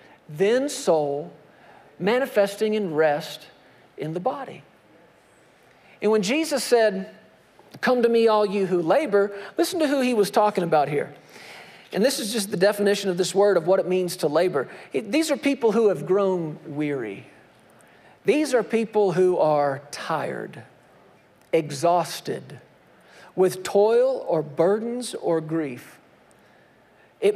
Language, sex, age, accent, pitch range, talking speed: English, male, 50-69, American, 180-225 Hz, 140 wpm